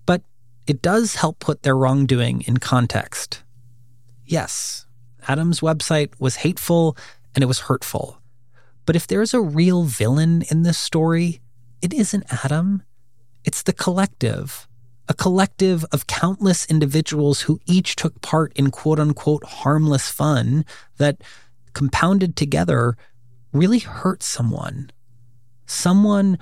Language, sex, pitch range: English, male, 120-160 Hz